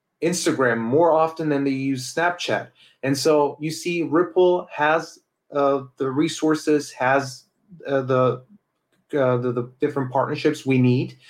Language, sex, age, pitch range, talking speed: English, male, 30-49, 125-150 Hz, 140 wpm